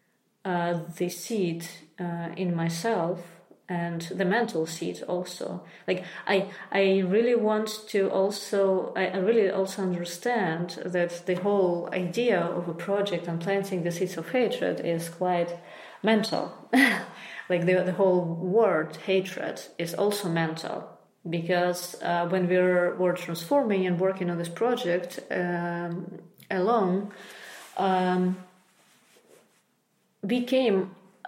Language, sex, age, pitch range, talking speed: English, female, 30-49, 175-215 Hz, 120 wpm